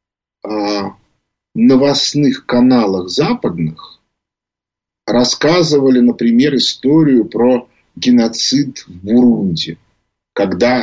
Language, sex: Russian, male